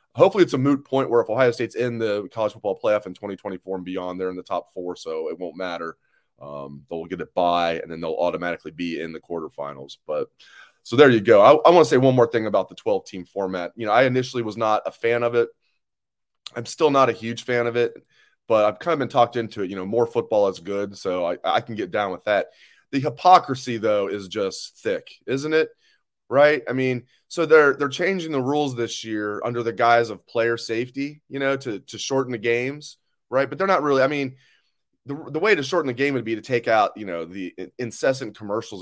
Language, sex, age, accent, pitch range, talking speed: English, male, 30-49, American, 100-135 Hz, 240 wpm